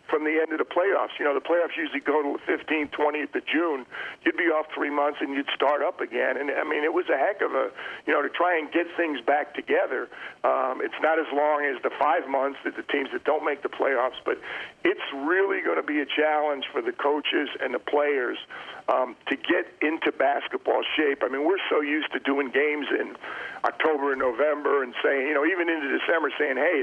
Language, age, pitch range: English, 50-69, 140-170 Hz